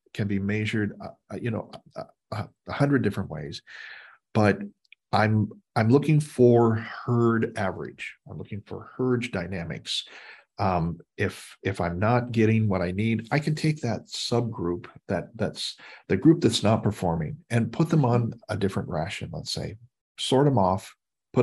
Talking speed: 160 wpm